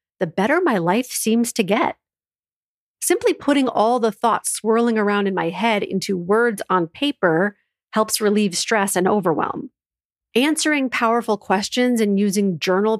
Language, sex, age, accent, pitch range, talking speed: English, female, 40-59, American, 190-245 Hz, 150 wpm